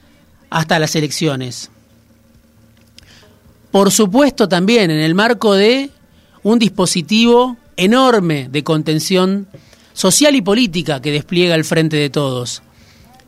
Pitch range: 150-205 Hz